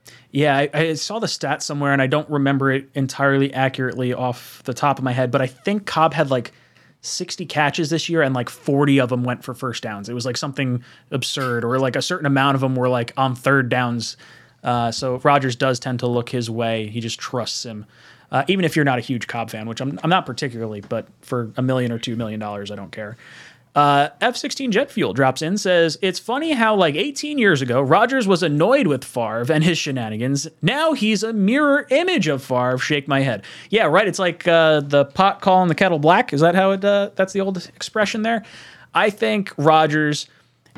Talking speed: 220 wpm